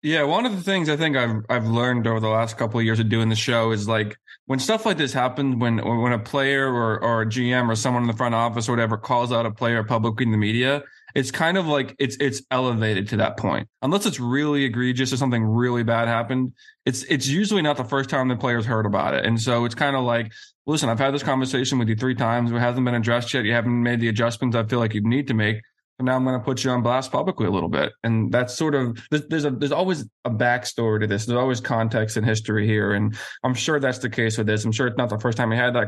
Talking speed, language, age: 270 wpm, English, 20-39